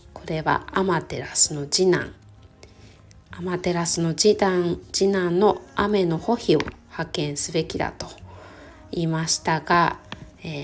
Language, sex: Japanese, female